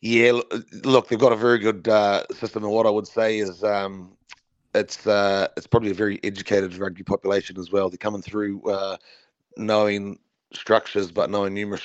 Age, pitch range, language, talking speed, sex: 30-49, 100-110 Hz, English, 180 wpm, male